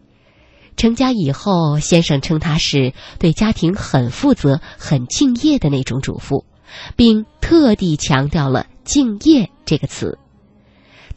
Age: 20-39